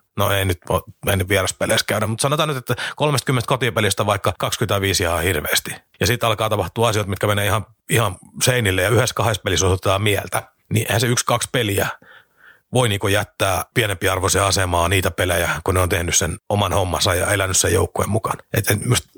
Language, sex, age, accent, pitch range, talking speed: Finnish, male, 30-49, native, 95-120 Hz, 185 wpm